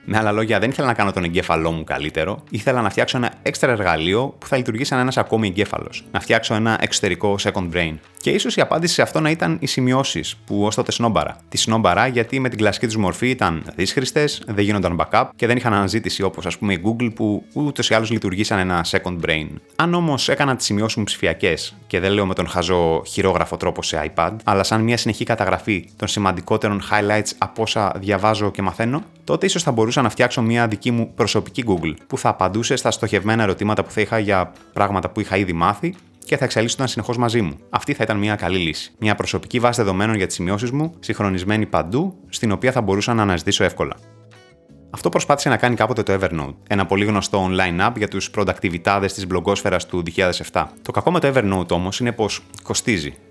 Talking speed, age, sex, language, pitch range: 210 wpm, 30-49, male, Greek, 95-120 Hz